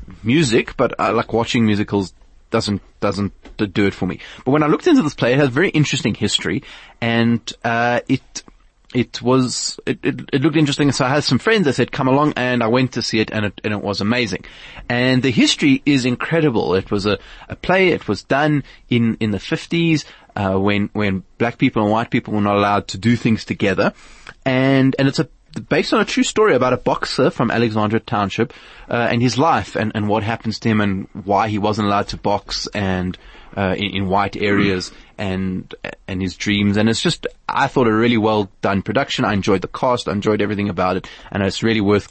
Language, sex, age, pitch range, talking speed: English, male, 20-39, 105-140 Hz, 215 wpm